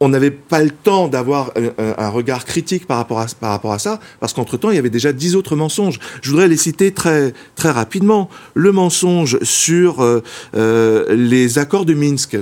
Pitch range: 120-180 Hz